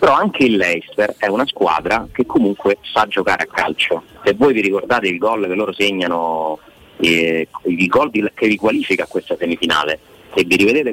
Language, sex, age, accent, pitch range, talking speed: Italian, male, 30-49, native, 95-115 Hz, 190 wpm